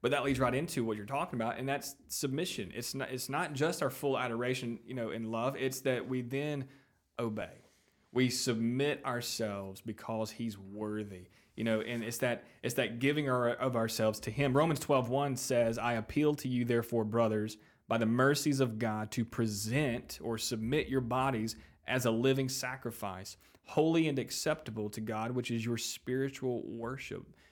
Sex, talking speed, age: male, 180 wpm, 30-49